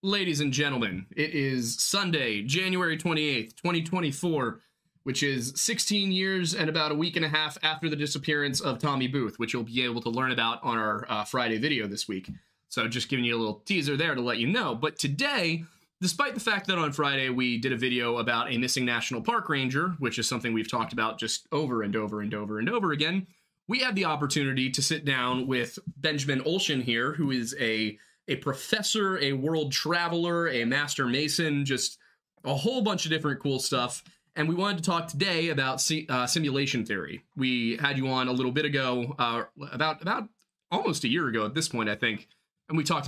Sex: male